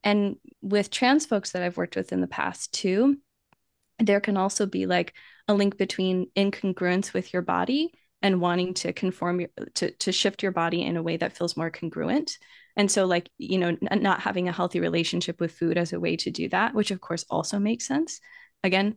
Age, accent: 20-39, American